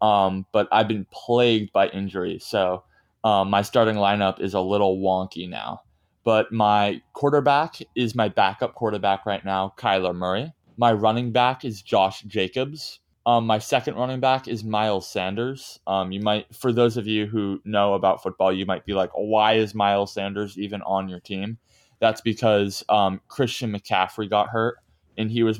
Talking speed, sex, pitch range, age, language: 175 wpm, male, 95-110 Hz, 20-39, English